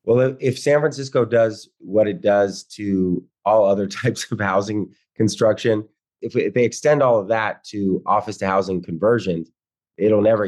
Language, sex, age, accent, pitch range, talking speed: English, male, 30-49, American, 100-120 Hz, 165 wpm